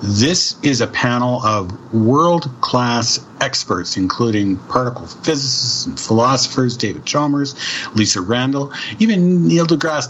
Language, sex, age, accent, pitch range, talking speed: English, male, 50-69, American, 110-145 Hz, 115 wpm